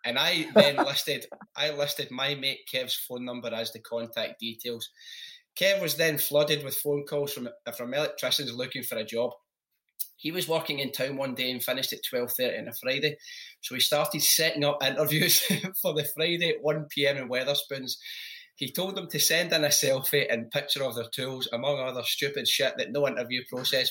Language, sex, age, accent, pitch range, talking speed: English, male, 20-39, British, 120-150 Hz, 200 wpm